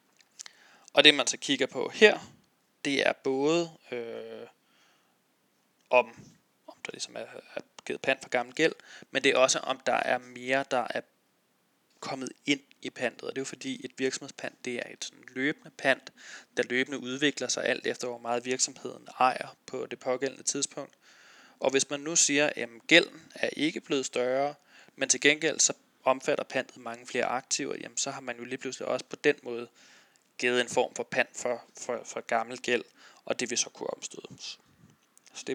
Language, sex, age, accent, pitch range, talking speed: Danish, male, 20-39, native, 125-145 Hz, 190 wpm